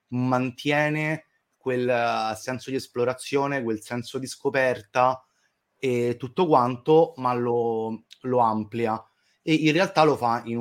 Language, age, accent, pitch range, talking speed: Italian, 30-49, native, 110-130 Hz, 130 wpm